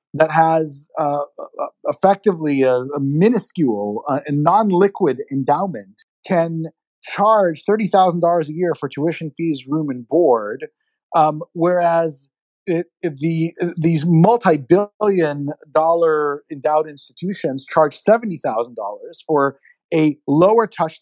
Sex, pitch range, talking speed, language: male, 155-205 Hz, 105 wpm, English